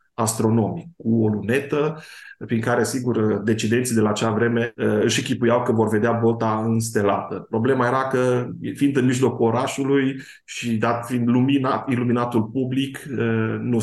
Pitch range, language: 110-135 Hz, Romanian